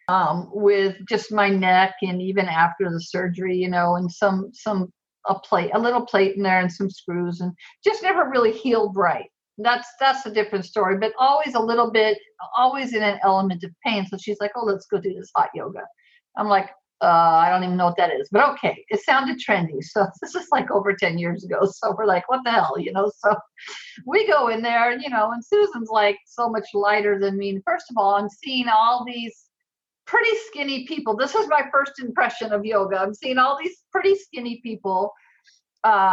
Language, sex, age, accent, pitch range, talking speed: English, female, 50-69, American, 195-260 Hz, 215 wpm